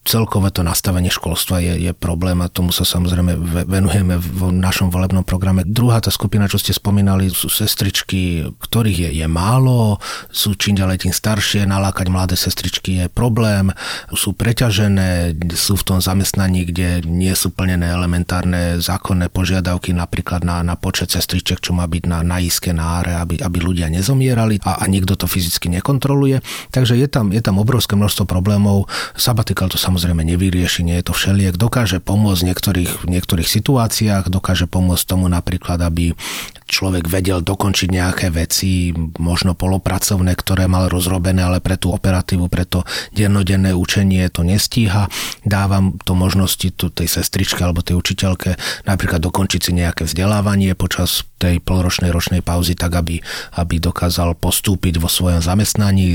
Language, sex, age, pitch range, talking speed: Slovak, male, 30-49, 90-100 Hz, 155 wpm